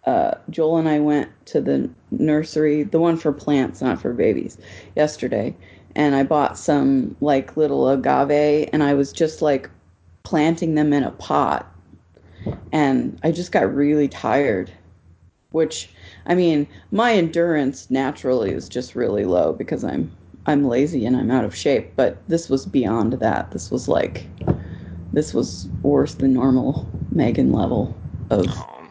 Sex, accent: female, American